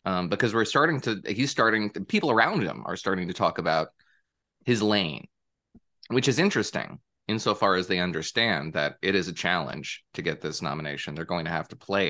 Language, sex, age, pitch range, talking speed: English, male, 20-39, 90-125 Hz, 195 wpm